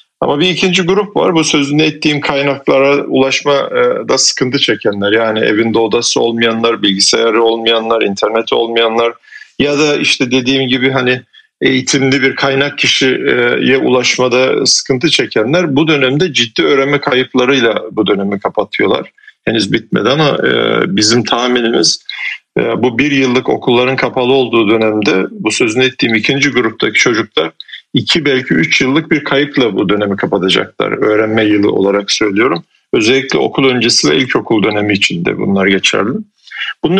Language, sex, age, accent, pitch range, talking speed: Turkish, male, 40-59, native, 115-145 Hz, 135 wpm